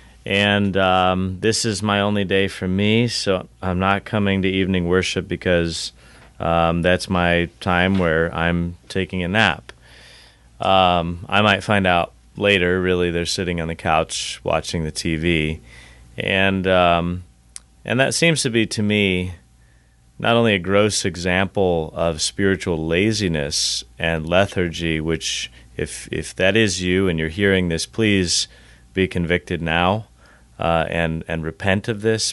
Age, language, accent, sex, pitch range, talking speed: 30-49, English, American, male, 80-100 Hz, 150 wpm